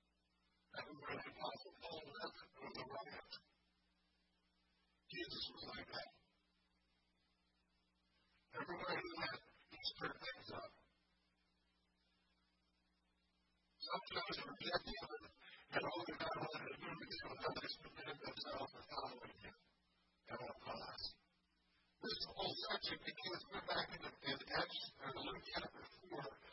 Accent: American